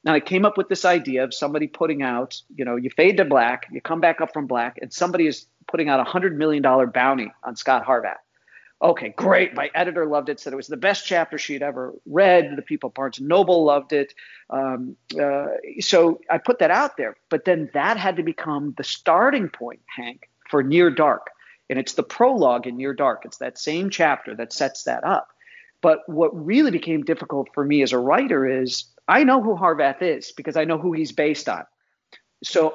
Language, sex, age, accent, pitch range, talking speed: English, male, 50-69, American, 135-175 Hz, 220 wpm